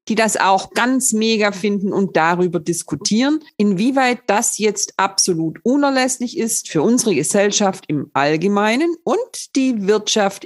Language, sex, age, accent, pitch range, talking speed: German, female, 50-69, German, 180-230 Hz, 130 wpm